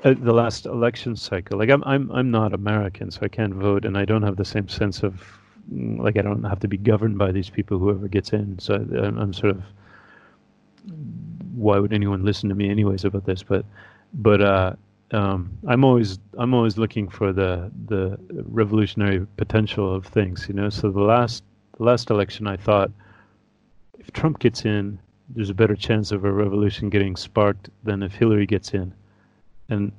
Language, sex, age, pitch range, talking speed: English, male, 30-49, 100-110 Hz, 190 wpm